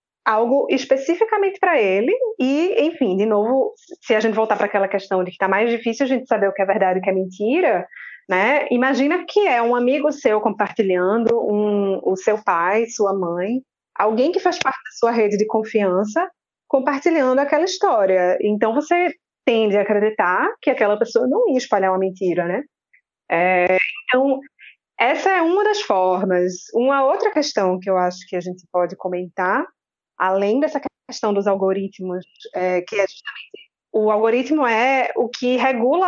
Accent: Brazilian